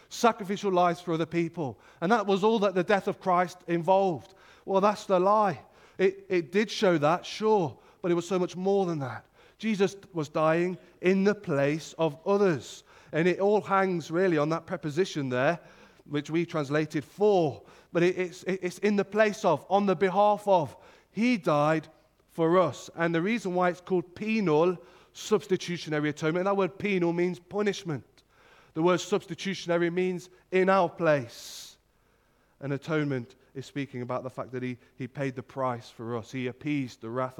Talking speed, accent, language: 180 wpm, British, English